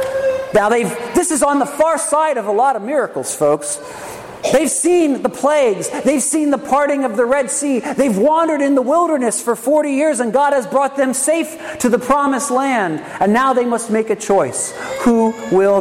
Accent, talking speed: American, 200 wpm